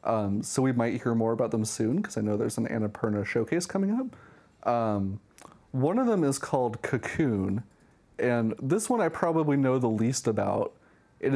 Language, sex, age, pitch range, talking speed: English, male, 30-49, 110-135 Hz, 185 wpm